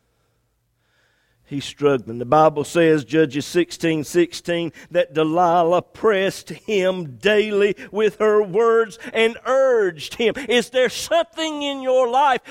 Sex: male